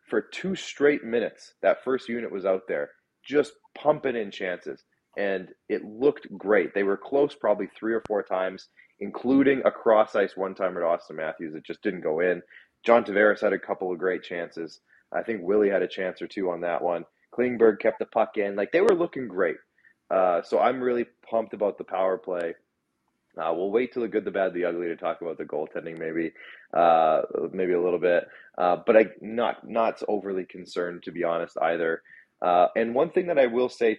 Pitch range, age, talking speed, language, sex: 95-130 Hz, 30-49, 210 wpm, English, male